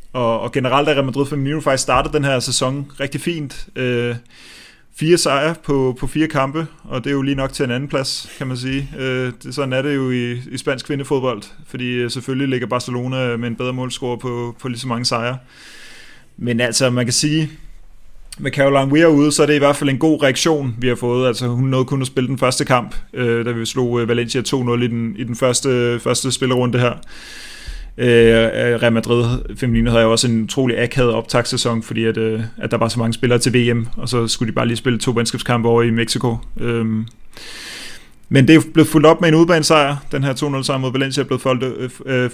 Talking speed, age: 215 wpm, 30-49